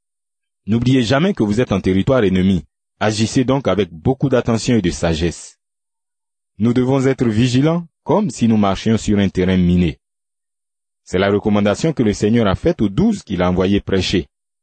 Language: French